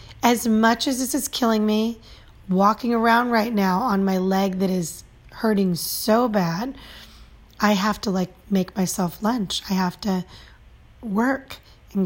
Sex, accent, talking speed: female, American, 155 wpm